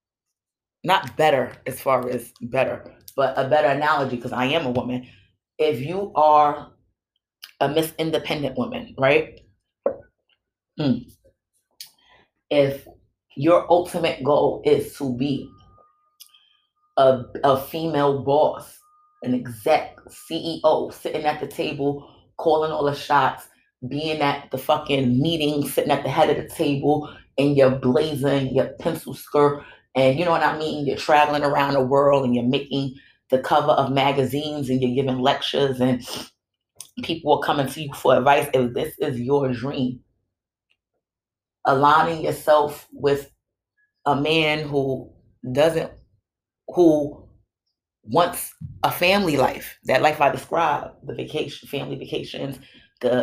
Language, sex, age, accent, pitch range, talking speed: English, female, 30-49, American, 130-155 Hz, 135 wpm